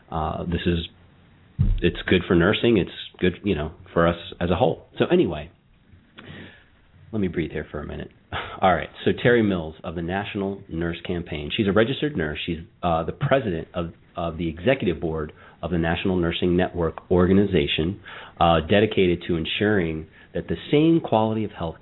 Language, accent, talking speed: English, American, 175 wpm